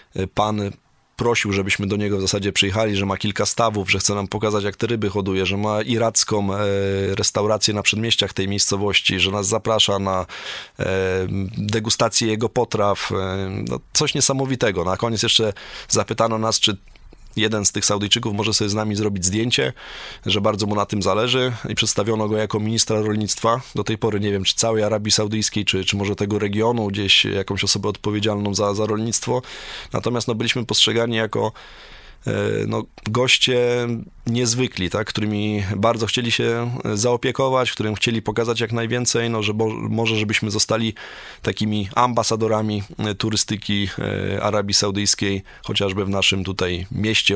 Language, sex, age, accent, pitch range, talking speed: Polish, male, 20-39, native, 100-115 Hz, 155 wpm